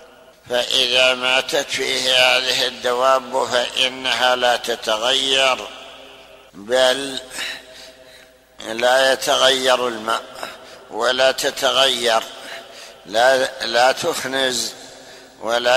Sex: male